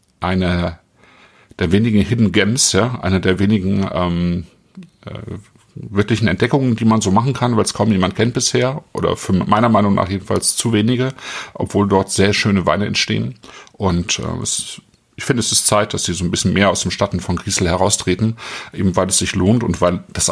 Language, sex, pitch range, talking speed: German, male, 95-120 Hz, 195 wpm